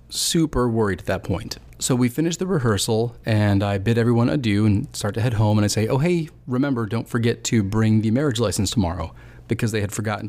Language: English